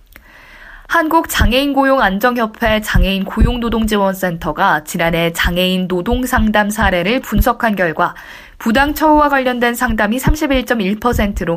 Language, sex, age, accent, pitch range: Korean, female, 20-39, native, 180-245 Hz